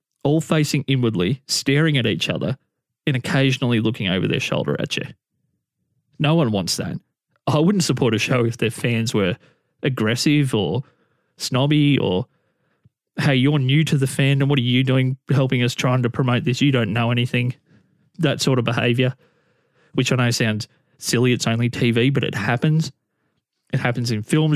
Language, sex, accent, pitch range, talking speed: English, male, Australian, 120-145 Hz, 175 wpm